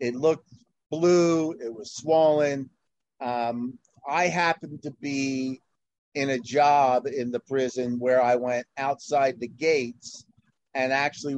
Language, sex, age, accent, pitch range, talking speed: English, male, 50-69, American, 130-160 Hz, 130 wpm